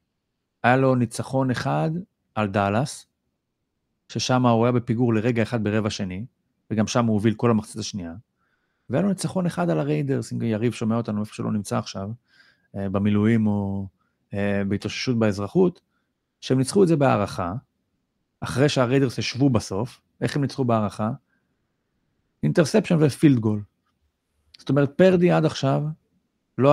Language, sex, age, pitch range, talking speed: Hebrew, male, 40-59, 105-135 Hz, 140 wpm